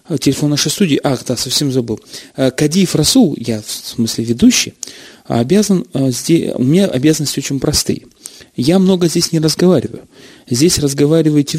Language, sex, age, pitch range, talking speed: Russian, male, 30-49, 130-180 Hz, 135 wpm